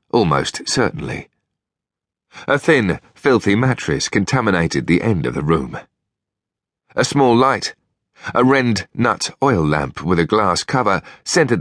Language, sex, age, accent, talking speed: English, male, 40-59, British, 130 wpm